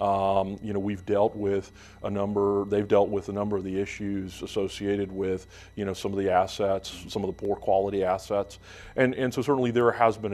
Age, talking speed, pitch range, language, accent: 40-59, 215 wpm, 95-110 Hz, English, American